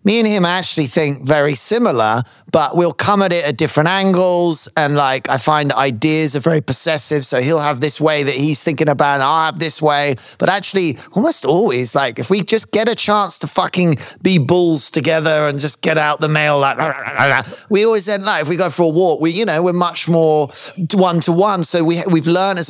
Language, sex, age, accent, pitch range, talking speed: English, male, 30-49, British, 145-180 Hz, 230 wpm